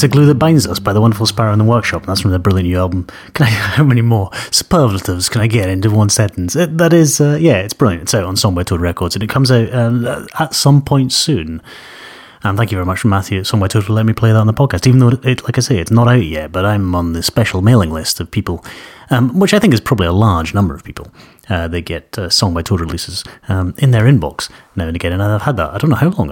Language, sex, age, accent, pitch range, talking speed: English, male, 30-49, British, 90-125 Hz, 285 wpm